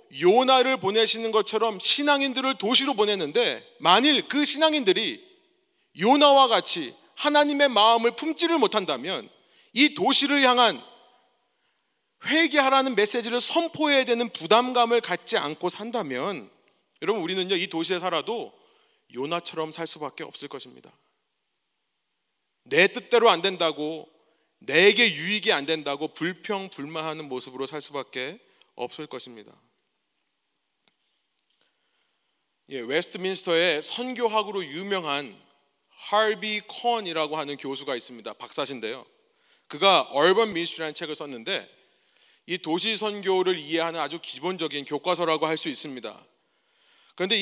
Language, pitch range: Korean, 170-265 Hz